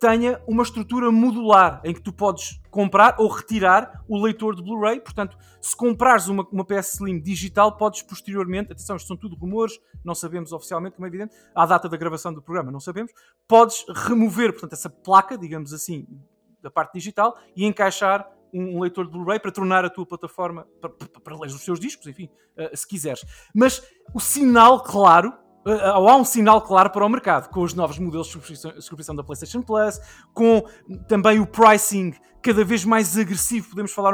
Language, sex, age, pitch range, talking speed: Portuguese, male, 20-39, 170-220 Hz, 185 wpm